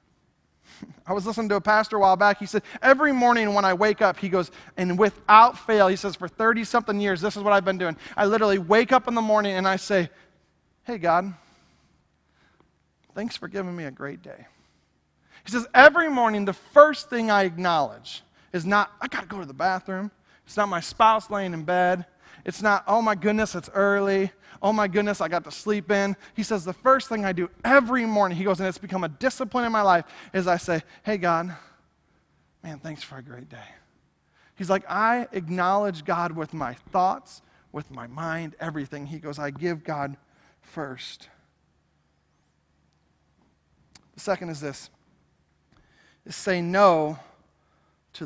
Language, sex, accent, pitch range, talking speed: English, male, American, 160-215 Hz, 185 wpm